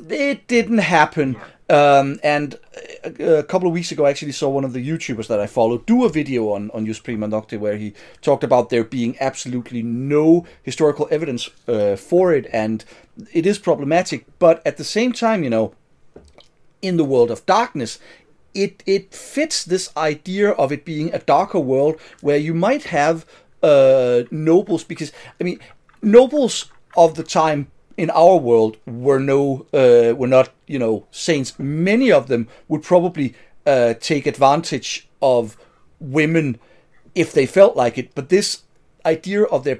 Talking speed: 170 wpm